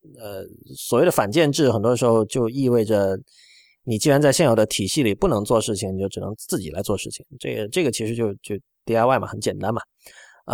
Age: 30-49